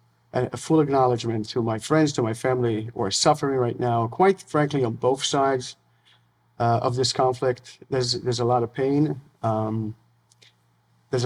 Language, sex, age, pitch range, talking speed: English, male, 50-69, 115-135 Hz, 165 wpm